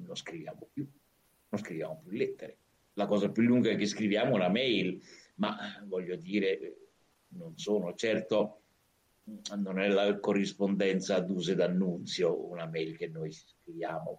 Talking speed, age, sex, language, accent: 145 wpm, 60-79, male, Italian, native